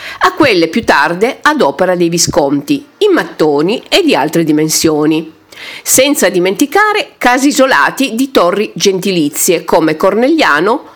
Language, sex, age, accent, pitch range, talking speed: Italian, female, 50-69, native, 175-290 Hz, 125 wpm